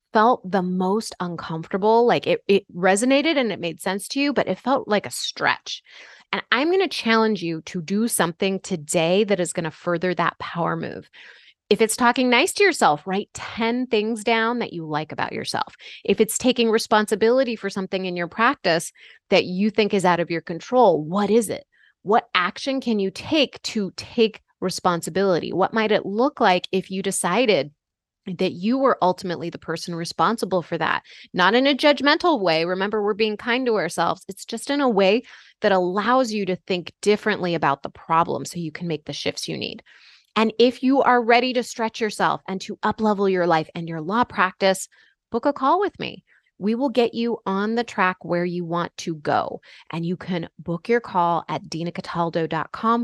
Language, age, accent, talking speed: English, 30-49, American, 195 wpm